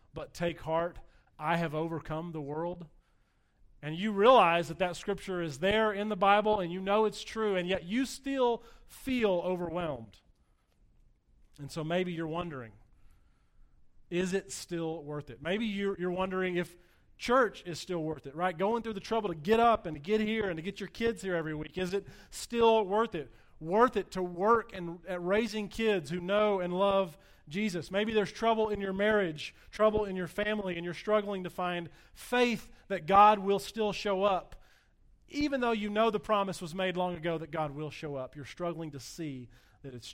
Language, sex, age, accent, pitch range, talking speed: English, male, 40-59, American, 160-205 Hz, 195 wpm